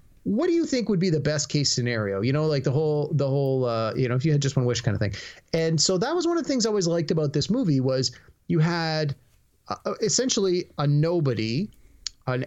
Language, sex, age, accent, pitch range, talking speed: English, male, 30-49, American, 125-165 Hz, 245 wpm